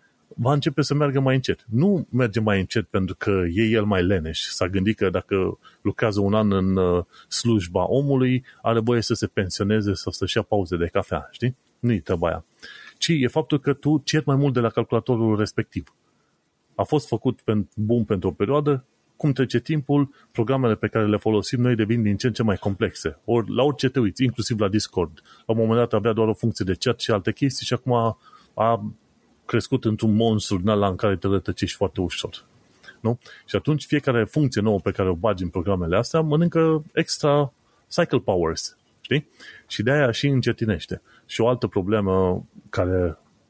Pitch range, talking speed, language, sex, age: 105-130 Hz, 190 wpm, Romanian, male, 30-49